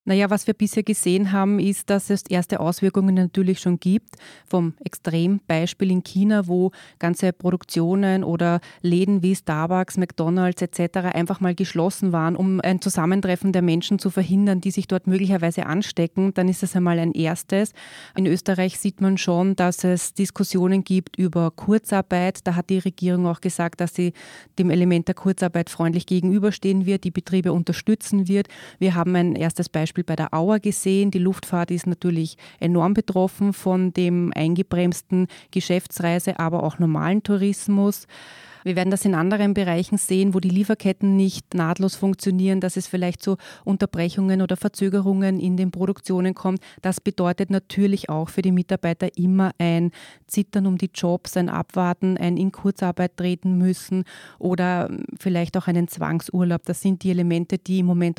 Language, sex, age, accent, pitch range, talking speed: German, female, 30-49, German, 175-195 Hz, 165 wpm